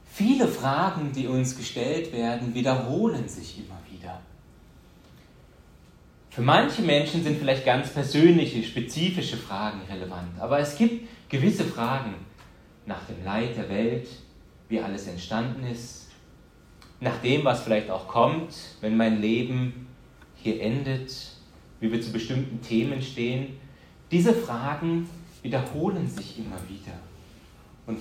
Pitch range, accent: 110-145 Hz, German